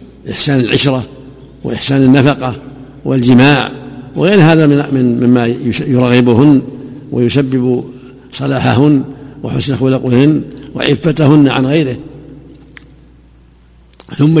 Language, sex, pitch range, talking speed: Arabic, male, 125-140 Hz, 75 wpm